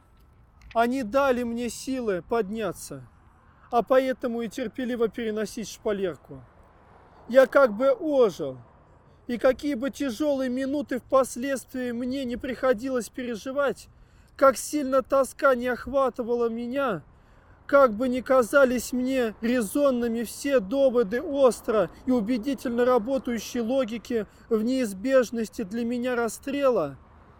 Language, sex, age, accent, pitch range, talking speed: Russian, male, 20-39, native, 210-260 Hz, 105 wpm